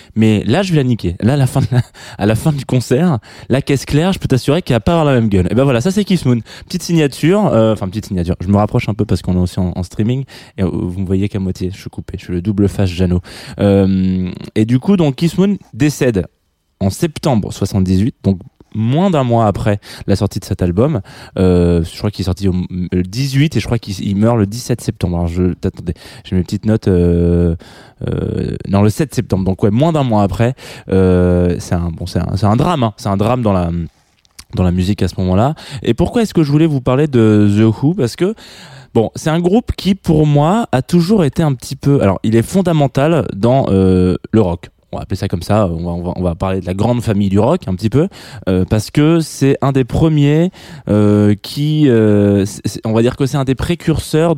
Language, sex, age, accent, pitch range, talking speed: French, male, 20-39, French, 95-140 Hz, 245 wpm